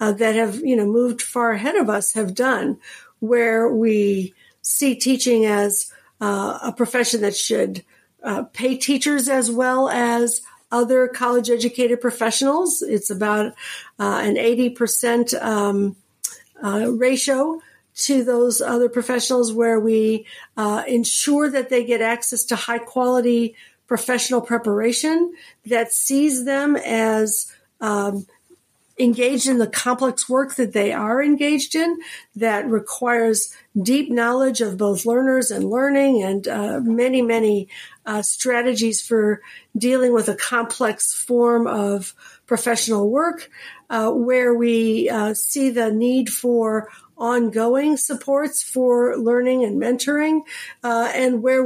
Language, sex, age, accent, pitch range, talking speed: English, female, 50-69, American, 220-255 Hz, 125 wpm